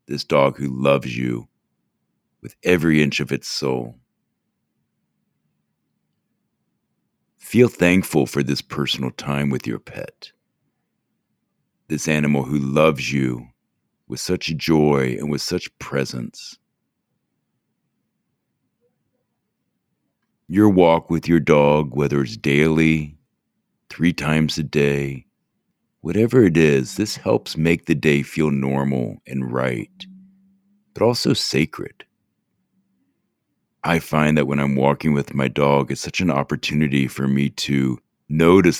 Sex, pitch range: male, 70-80 Hz